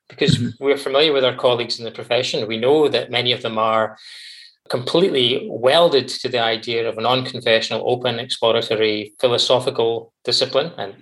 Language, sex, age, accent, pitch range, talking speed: English, male, 20-39, British, 115-180 Hz, 160 wpm